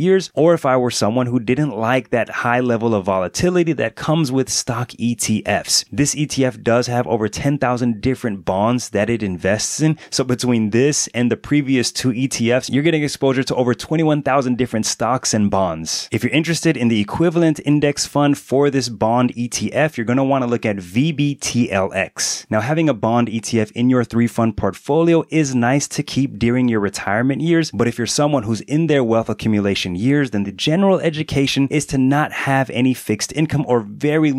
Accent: American